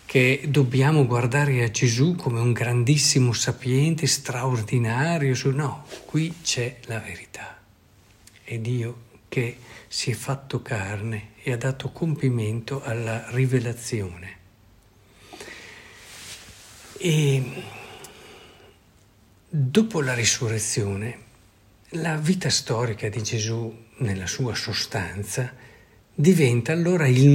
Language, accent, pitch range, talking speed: Italian, native, 110-145 Hz, 90 wpm